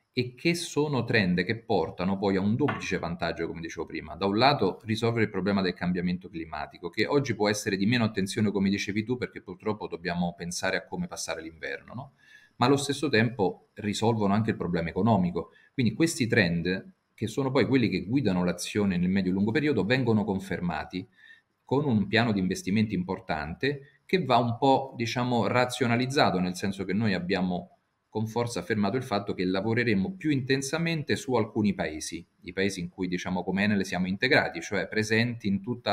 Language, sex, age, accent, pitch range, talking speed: Italian, male, 40-59, native, 90-120 Hz, 185 wpm